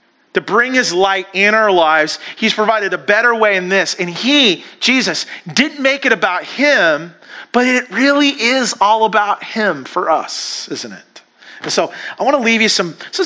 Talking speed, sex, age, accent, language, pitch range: 185 wpm, male, 40-59, American, English, 180-250 Hz